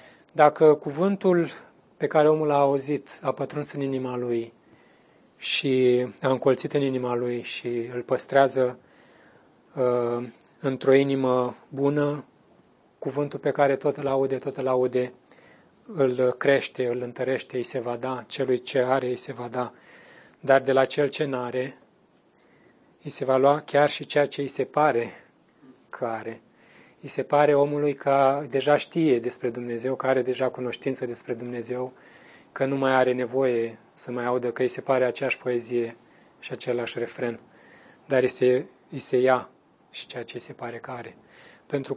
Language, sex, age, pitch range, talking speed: Romanian, male, 30-49, 125-140 Hz, 160 wpm